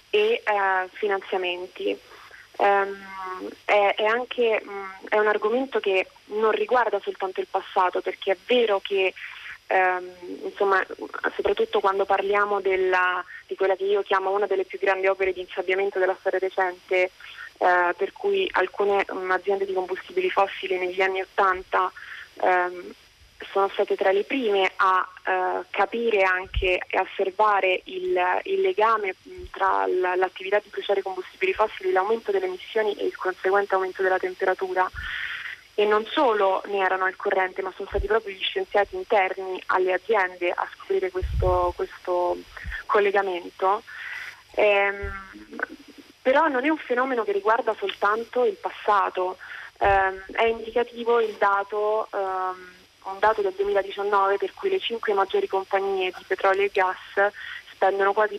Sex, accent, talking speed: female, native, 140 wpm